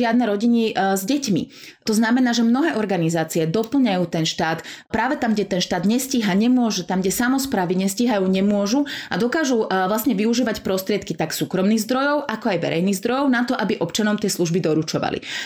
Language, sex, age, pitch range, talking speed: Slovak, female, 30-49, 175-225 Hz, 165 wpm